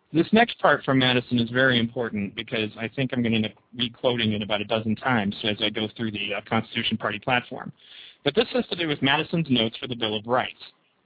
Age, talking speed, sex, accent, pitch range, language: 40-59, 235 wpm, male, American, 120-165 Hz, English